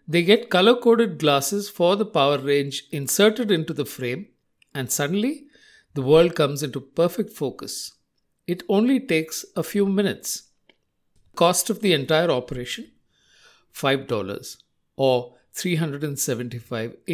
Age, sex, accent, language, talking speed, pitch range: 60-79, male, Indian, English, 120 wpm, 140-200 Hz